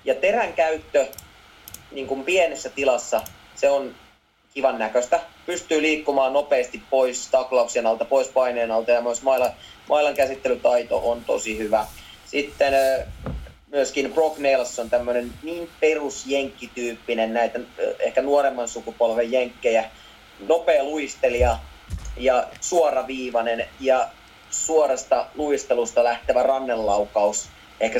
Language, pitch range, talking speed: Finnish, 115-145 Hz, 105 wpm